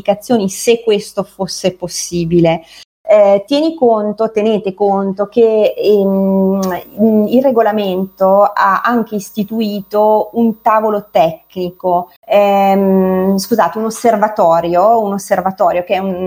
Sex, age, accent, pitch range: female, 30-49, native, 185-225 Hz